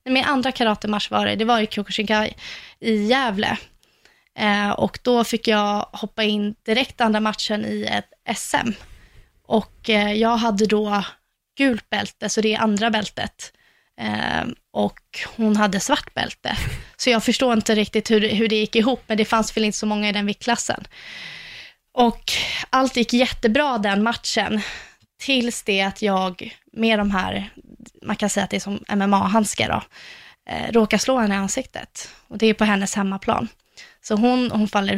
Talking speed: 170 wpm